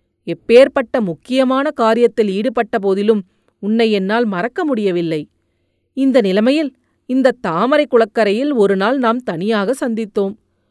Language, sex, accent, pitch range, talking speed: Tamil, female, native, 200-265 Hz, 95 wpm